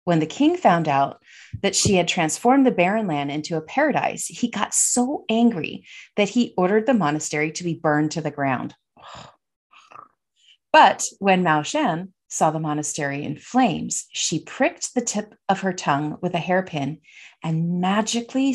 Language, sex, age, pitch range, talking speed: English, female, 40-59, 155-210 Hz, 165 wpm